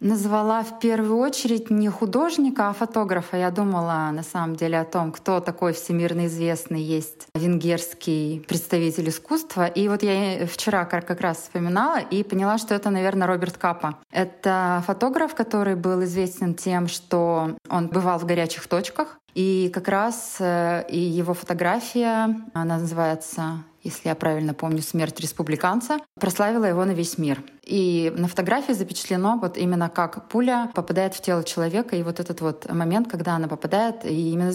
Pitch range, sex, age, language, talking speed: 170-215 Hz, female, 20-39, Russian, 150 wpm